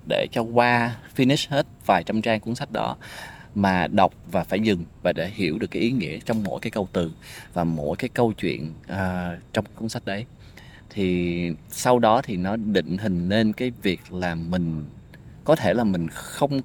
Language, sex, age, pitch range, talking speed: Vietnamese, male, 20-39, 90-120 Hz, 200 wpm